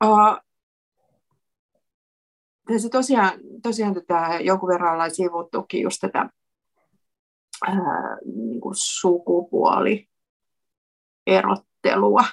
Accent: native